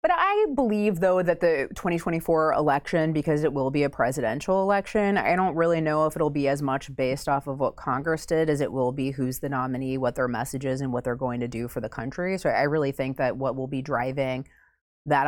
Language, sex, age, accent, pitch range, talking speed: English, female, 30-49, American, 135-165 Hz, 235 wpm